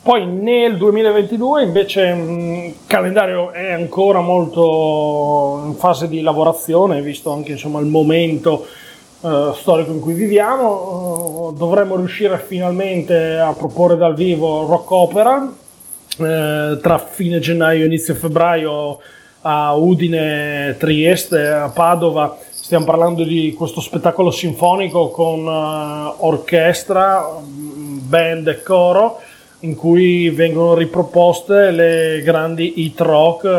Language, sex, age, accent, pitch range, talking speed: Italian, male, 30-49, native, 160-180 Hz, 105 wpm